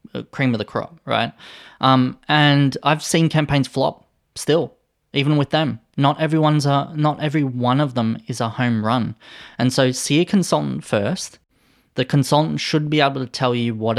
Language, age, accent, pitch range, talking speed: English, 20-39, Australian, 115-145 Hz, 180 wpm